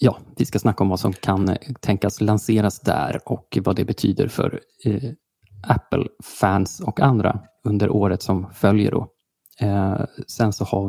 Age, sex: 20-39, male